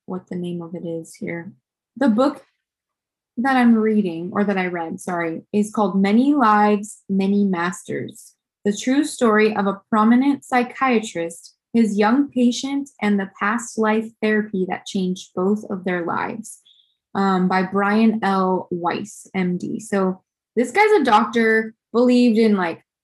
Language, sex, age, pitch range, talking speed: English, female, 20-39, 190-225 Hz, 150 wpm